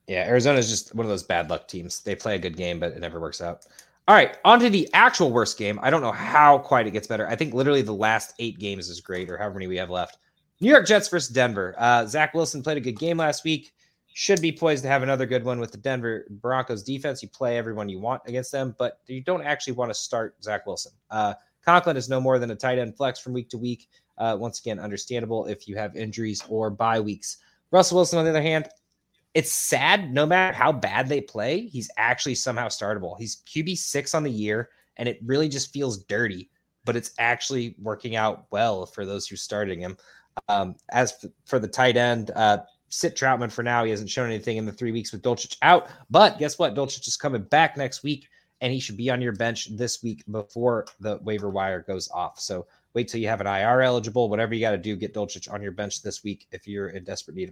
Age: 20-39